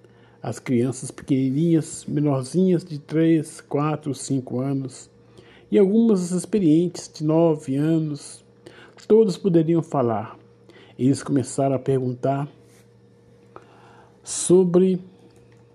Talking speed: 90 wpm